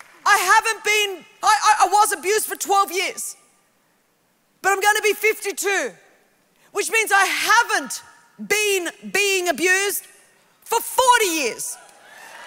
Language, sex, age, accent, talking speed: English, female, 40-59, Australian, 120 wpm